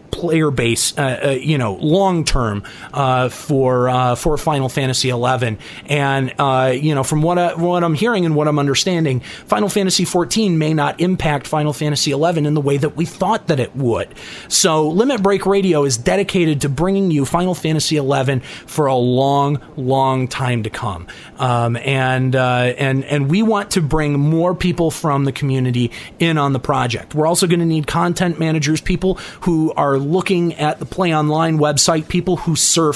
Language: English